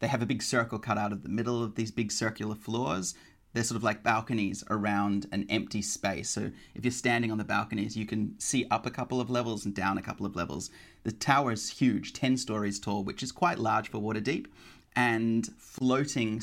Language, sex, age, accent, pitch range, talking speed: English, male, 30-49, Australian, 100-115 Hz, 220 wpm